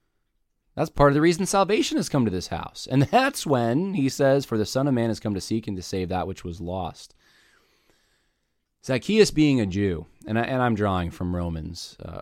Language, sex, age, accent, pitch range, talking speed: English, male, 20-39, American, 95-130 Hz, 215 wpm